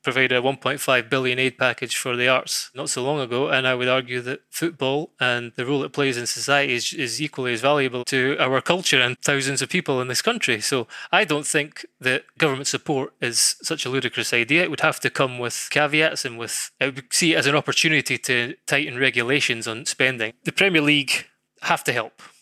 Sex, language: male, English